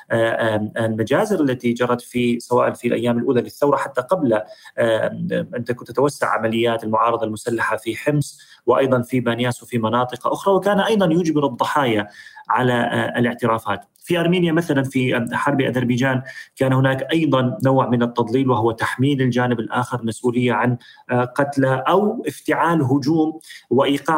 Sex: male